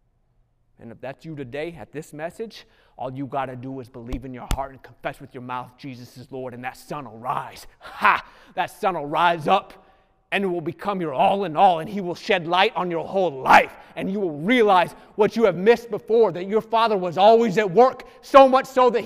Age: 30-49